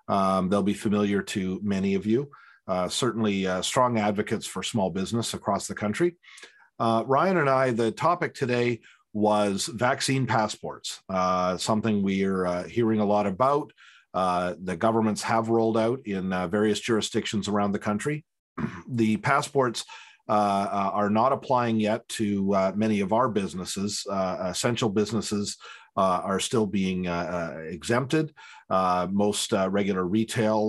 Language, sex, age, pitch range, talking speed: English, male, 40-59, 95-115 Hz, 150 wpm